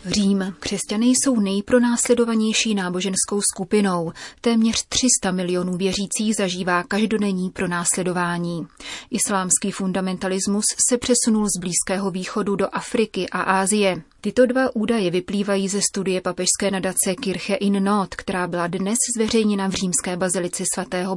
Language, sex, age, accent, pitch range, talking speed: Czech, female, 30-49, native, 185-210 Hz, 125 wpm